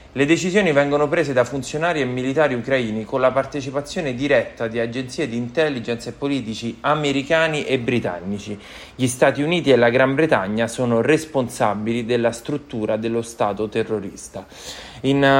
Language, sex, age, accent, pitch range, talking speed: English, male, 20-39, Italian, 105-130 Hz, 145 wpm